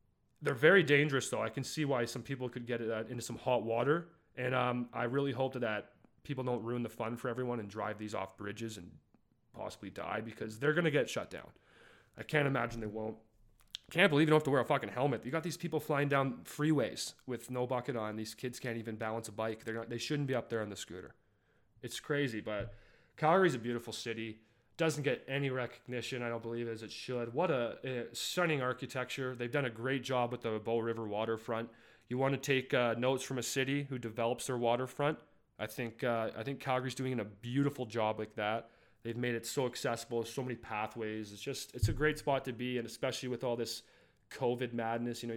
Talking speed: 225 wpm